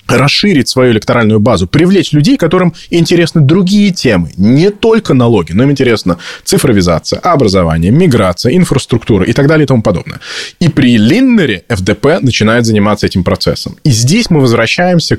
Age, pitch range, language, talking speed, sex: 20-39, 105-140 Hz, Russian, 150 wpm, male